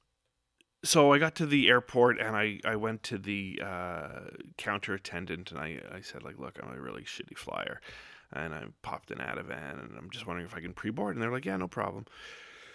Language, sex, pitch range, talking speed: English, male, 100-150 Hz, 215 wpm